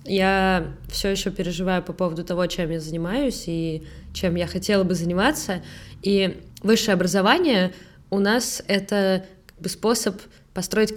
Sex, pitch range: female, 165-205 Hz